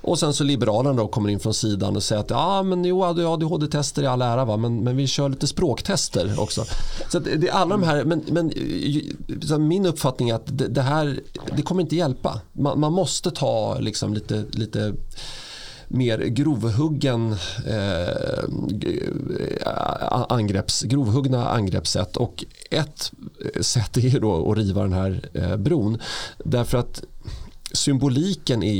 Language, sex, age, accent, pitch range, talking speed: Swedish, male, 30-49, native, 110-145 Hz, 160 wpm